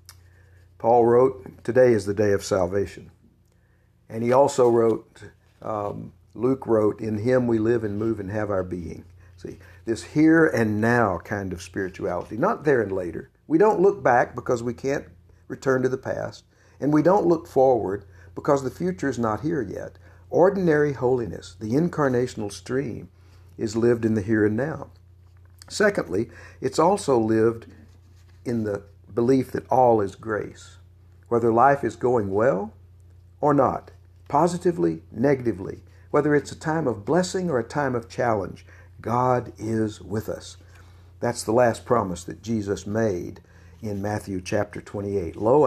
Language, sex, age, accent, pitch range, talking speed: English, male, 60-79, American, 90-125 Hz, 155 wpm